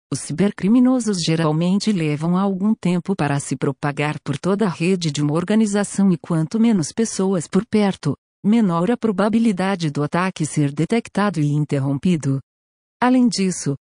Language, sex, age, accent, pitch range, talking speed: Portuguese, female, 50-69, Brazilian, 155-215 Hz, 140 wpm